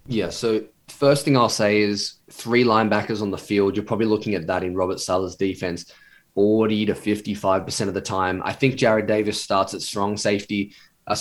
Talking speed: 195 wpm